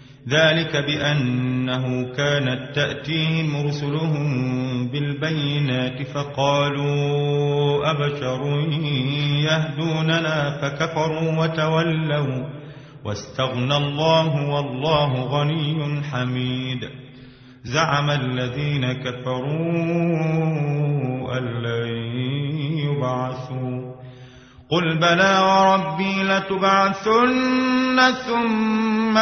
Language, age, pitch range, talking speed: Arabic, 30-49, 145-195 Hz, 55 wpm